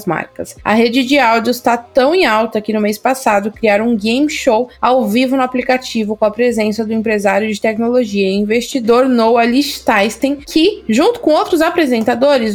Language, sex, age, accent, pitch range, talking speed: Portuguese, female, 20-39, Brazilian, 215-265 Hz, 175 wpm